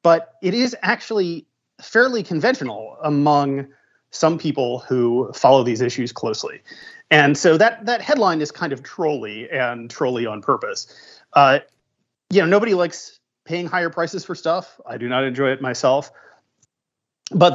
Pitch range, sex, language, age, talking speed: 130-170 Hz, male, English, 30-49, 150 wpm